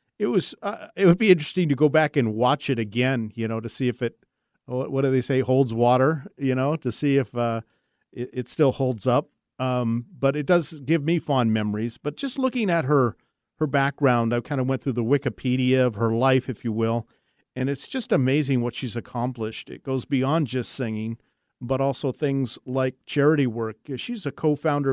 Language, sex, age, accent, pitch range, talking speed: English, male, 50-69, American, 125-150 Hz, 205 wpm